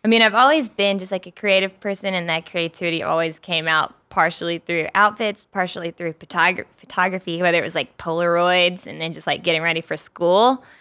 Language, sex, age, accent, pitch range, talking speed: English, female, 20-39, American, 170-200 Hz, 195 wpm